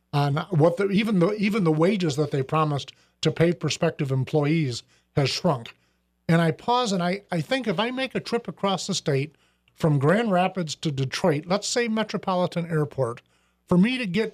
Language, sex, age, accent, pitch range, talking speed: English, male, 50-69, American, 155-205 Hz, 190 wpm